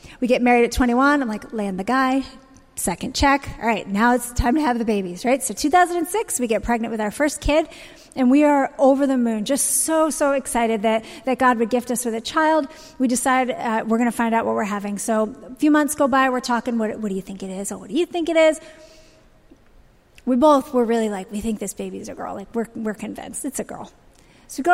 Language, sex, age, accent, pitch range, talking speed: English, female, 30-49, American, 235-290 Hz, 250 wpm